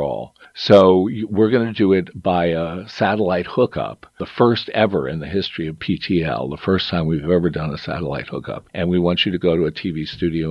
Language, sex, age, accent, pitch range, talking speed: English, male, 50-69, American, 75-90 Hz, 215 wpm